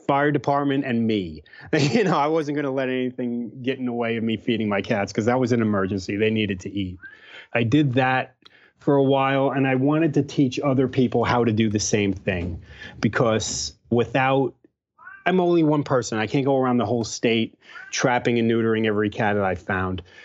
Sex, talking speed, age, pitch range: male, 205 wpm, 30-49, 110-135 Hz